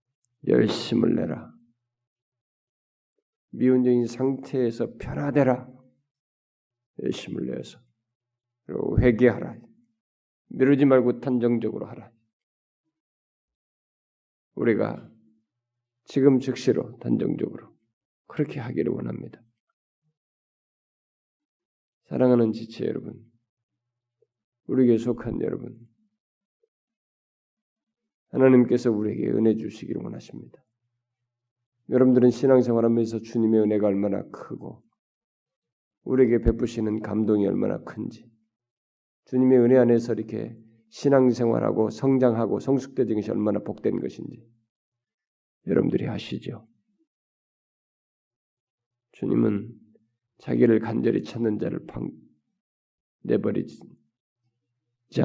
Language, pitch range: Korean, 110-125 Hz